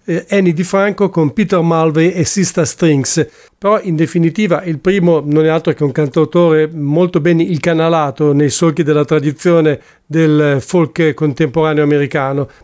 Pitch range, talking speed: 150-175 Hz, 145 wpm